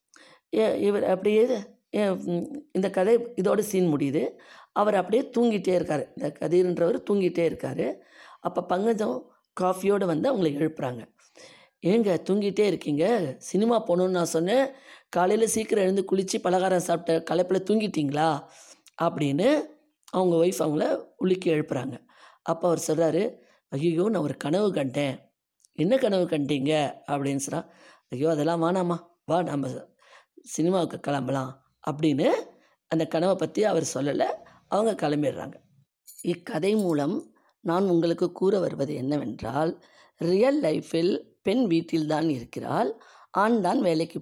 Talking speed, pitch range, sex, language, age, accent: 115 wpm, 160-215 Hz, female, Tamil, 20-39, native